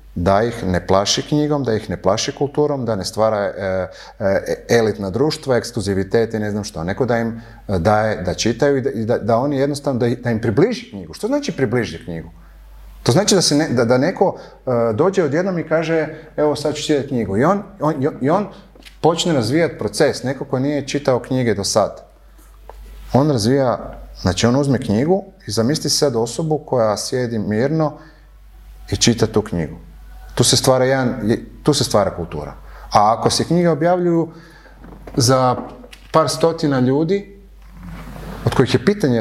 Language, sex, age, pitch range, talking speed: English, male, 30-49, 115-150 Hz, 175 wpm